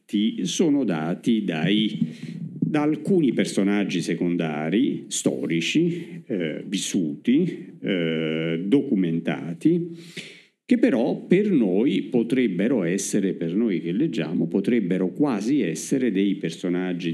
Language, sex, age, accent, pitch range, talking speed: Italian, male, 50-69, native, 85-105 Hz, 90 wpm